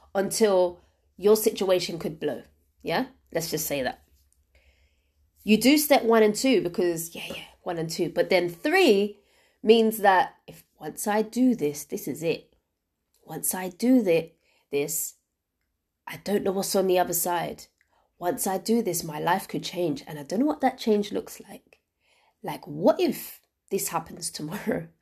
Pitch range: 165-235 Hz